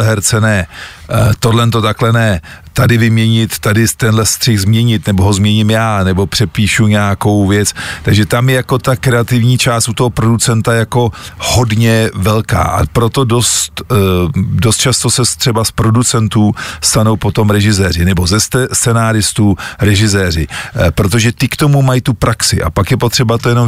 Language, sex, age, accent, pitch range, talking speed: Czech, male, 40-59, native, 100-115 Hz, 150 wpm